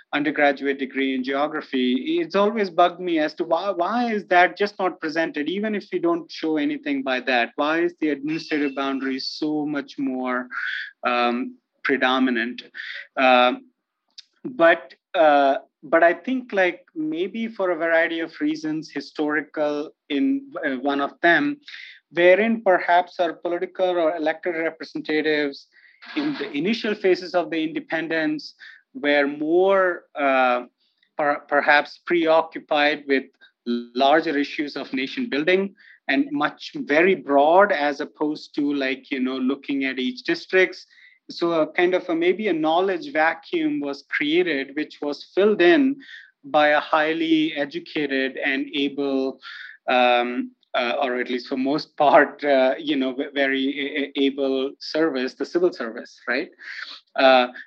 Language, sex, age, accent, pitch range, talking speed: English, male, 30-49, Indian, 140-180 Hz, 135 wpm